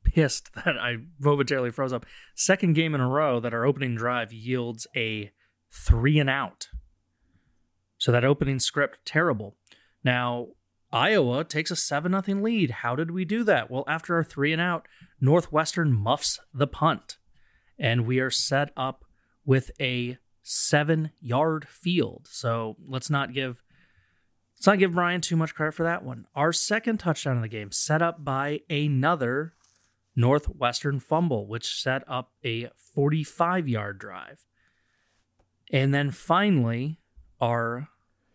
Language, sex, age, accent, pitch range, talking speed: English, male, 30-49, American, 120-155 Hz, 145 wpm